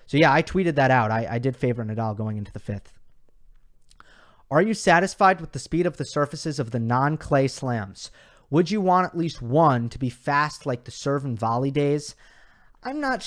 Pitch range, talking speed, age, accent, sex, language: 120-170 Hz, 205 wpm, 30-49, American, male, English